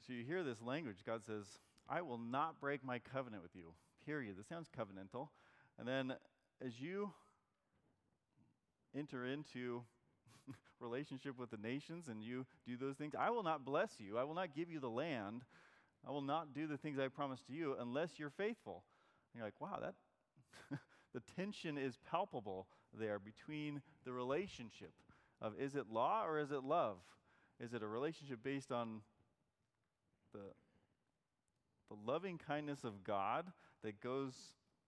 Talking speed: 160 wpm